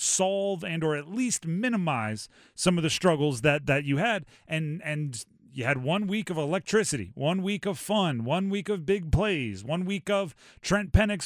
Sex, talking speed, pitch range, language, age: male, 190 wpm, 140-195 Hz, English, 30-49